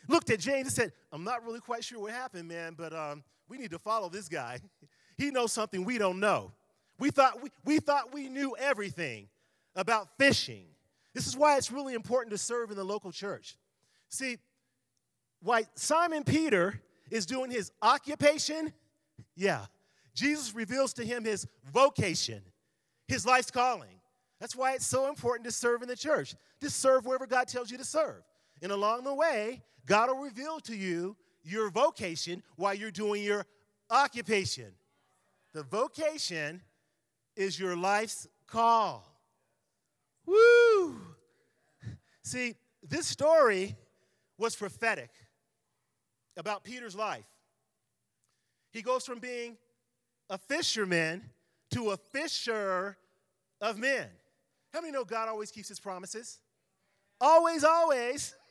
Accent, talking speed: American, 140 wpm